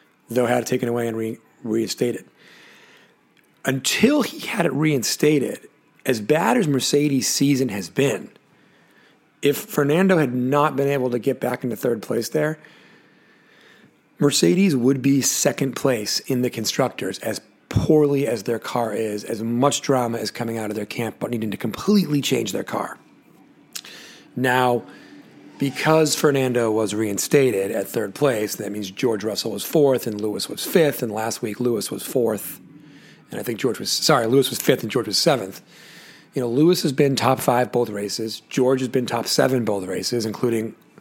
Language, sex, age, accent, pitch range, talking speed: English, male, 40-59, American, 115-145 Hz, 170 wpm